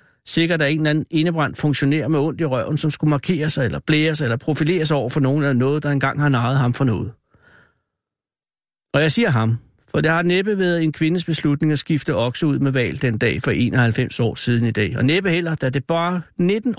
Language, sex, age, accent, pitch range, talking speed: Danish, male, 60-79, native, 125-160 Hz, 230 wpm